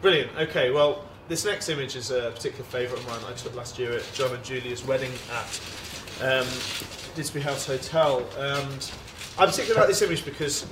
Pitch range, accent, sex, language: 120-145 Hz, British, male, English